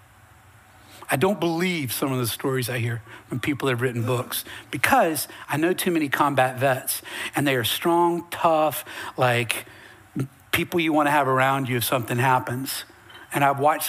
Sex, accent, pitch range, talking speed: male, American, 120-170 Hz, 175 wpm